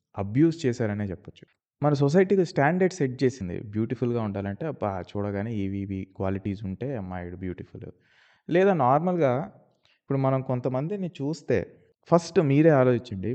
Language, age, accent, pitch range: Telugu, 20-39, native, 110-155 Hz